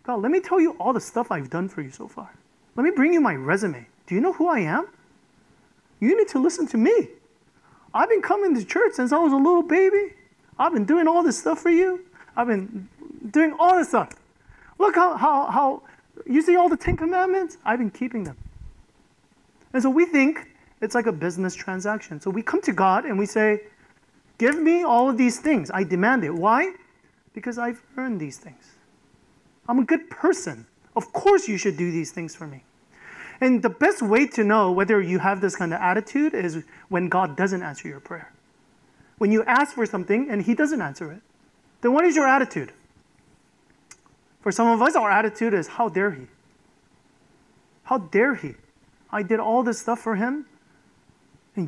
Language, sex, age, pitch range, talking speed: English, male, 30-49, 205-310 Hz, 200 wpm